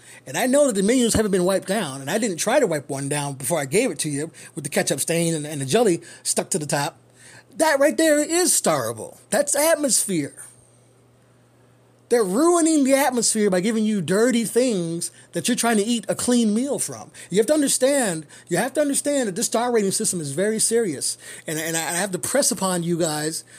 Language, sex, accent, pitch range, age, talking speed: English, male, American, 165-235 Hz, 30-49, 220 wpm